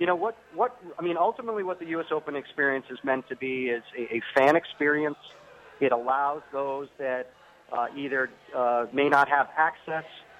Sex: male